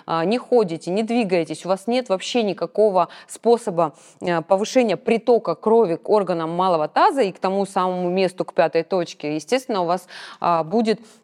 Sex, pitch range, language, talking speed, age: female, 175-230 Hz, Russian, 155 wpm, 20-39